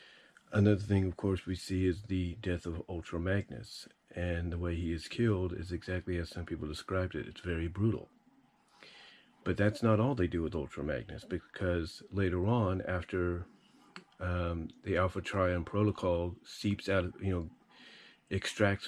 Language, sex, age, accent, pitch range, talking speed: English, male, 40-59, American, 85-105 Hz, 165 wpm